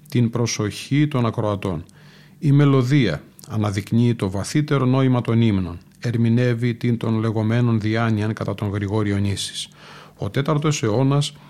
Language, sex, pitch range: Greek, male, 115-140 Hz